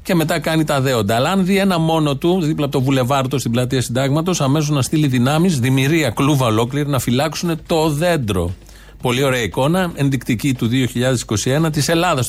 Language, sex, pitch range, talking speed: Greek, male, 115-155 Hz, 180 wpm